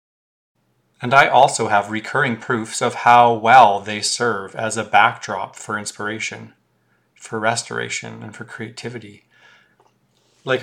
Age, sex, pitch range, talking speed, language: 30-49, male, 105-120 Hz, 125 wpm, English